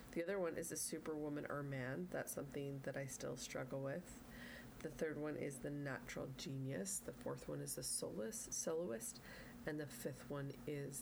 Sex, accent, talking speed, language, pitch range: female, American, 180 wpm, English, 140-170 Hz